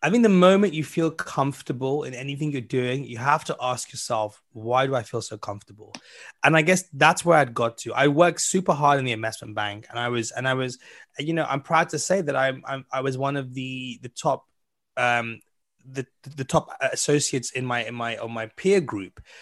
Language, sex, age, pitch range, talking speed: English, male, 20-39, 130-160 Hz, 225 wpm